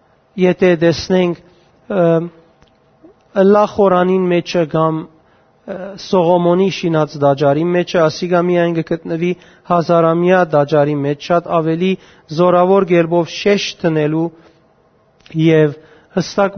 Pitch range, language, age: 160-180 Hz, English, 40-59